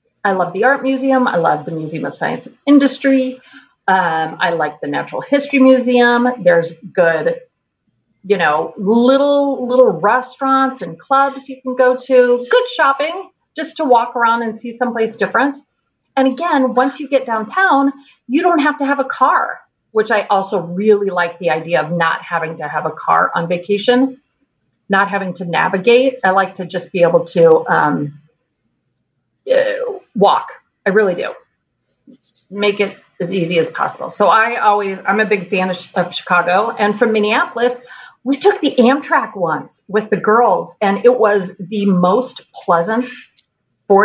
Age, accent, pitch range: 40-59, American, 190-260 Hz